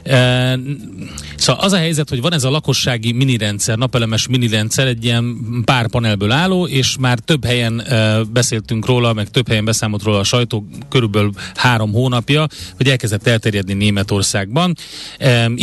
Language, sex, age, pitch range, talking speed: Hungarian, male, 30-49, 110-140 Hz, 155 wpm